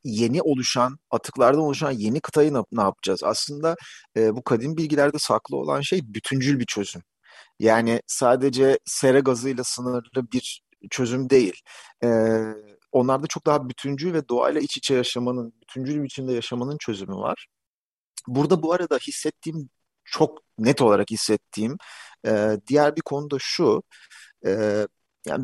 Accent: native